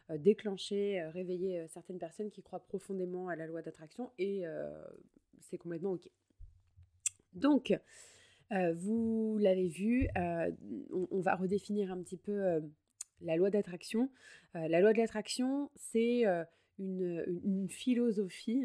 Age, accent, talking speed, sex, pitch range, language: 20-39, French, 140 wpm, female, 175-225 Hz, French